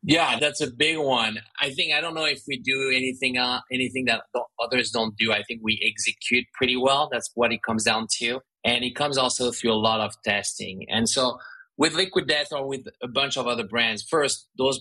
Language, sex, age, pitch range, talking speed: English, male, 30-49, 105-120 Hz, 225 wpm